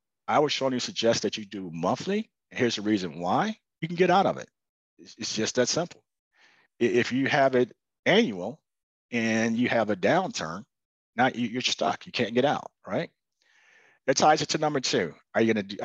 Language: English